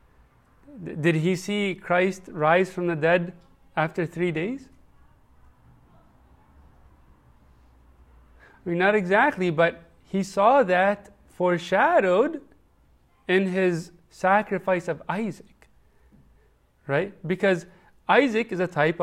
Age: 30-49